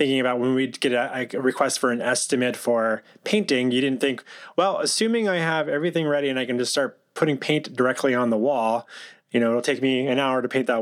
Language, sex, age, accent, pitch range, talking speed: English, male, 20-39, American, 125-145 Hz, 240 wpm